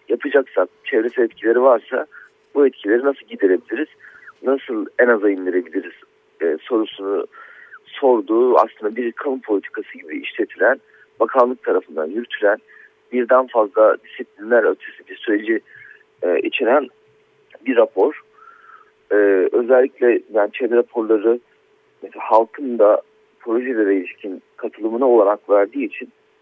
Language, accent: Turkish, native